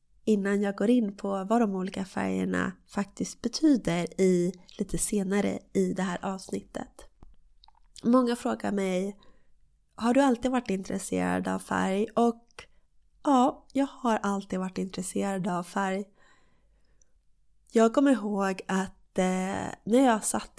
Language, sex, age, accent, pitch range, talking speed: Swedish, female, 20-39, native, 185-230 Hz, 130 wpm